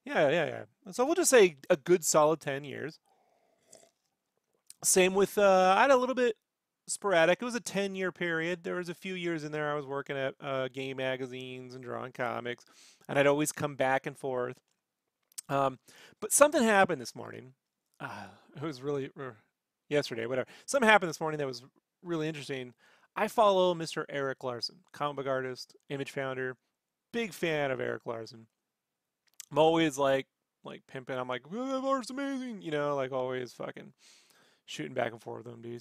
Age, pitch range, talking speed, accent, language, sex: 30-49, 135-185 Hz, 185 wpm, American, English, male